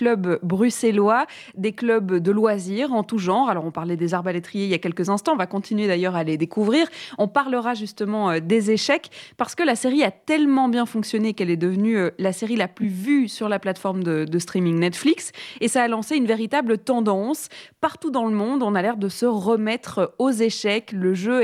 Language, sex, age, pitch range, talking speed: French, female, 20-39, 190-240 Hz, 215 wpm